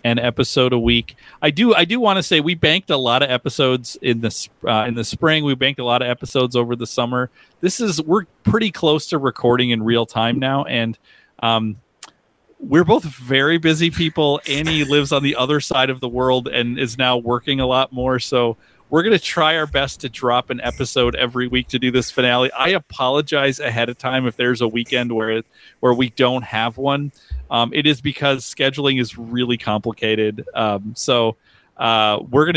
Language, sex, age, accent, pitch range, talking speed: English, male, 40-59, American, 115-145 Hz, 205 wpm